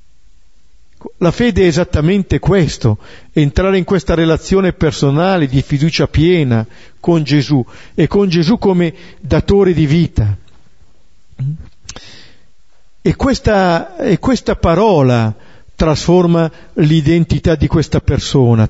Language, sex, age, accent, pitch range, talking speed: Italian, male, 50-69, native, 115-180 Hz, 100 wpm